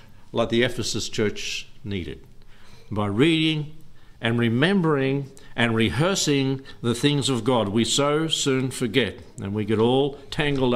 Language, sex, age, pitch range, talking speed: English, male, 60-79, 105-125 Hz, 135 wpm